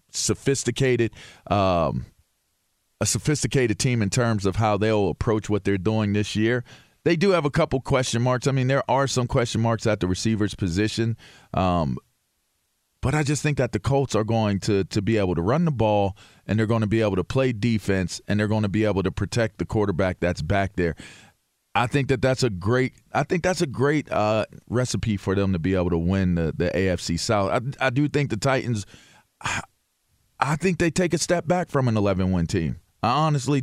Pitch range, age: 100-130 Hz, 40-59